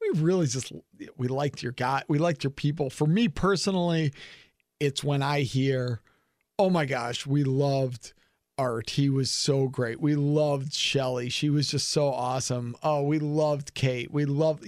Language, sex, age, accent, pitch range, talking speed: English, male, 40-59, American, 135-155 Hz, 170 wpm